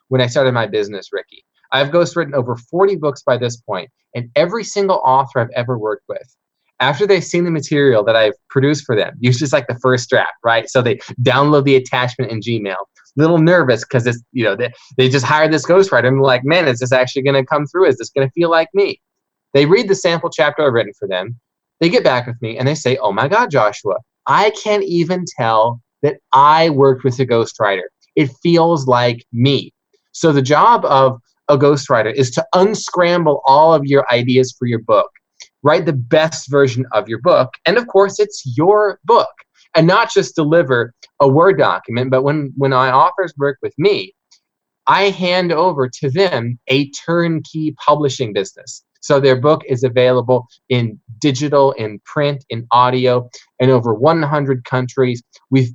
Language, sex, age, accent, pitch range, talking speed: English, male, 20-39, American, 125-165 Hz, 195 wpm